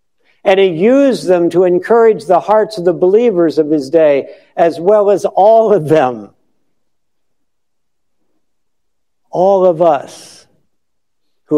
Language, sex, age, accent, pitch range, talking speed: English, male, 60-79, American, 150-205 Hz, 125 wpm